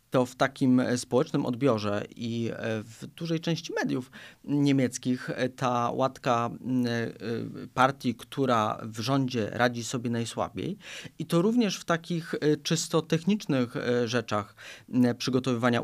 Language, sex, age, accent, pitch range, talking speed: Polish, male, 40-59, native, 115-140 Hz, 110 wpm